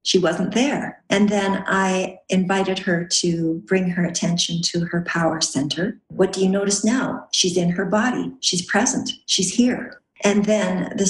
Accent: American